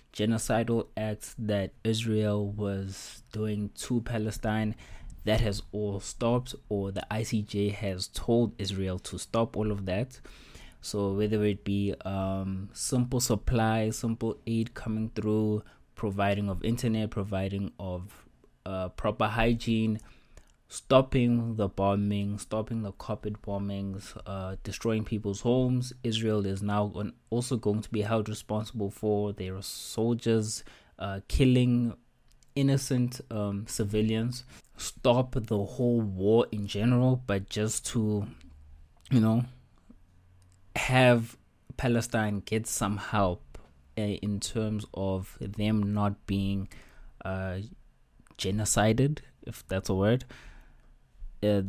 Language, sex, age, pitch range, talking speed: English, male, 20-39, 100-115 Hz, 115 wpm